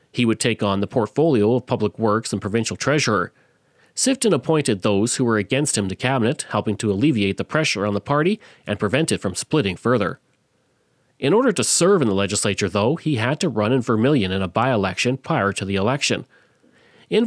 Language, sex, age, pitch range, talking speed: English, male, 40-59, 105-150 Hz, 200 wpm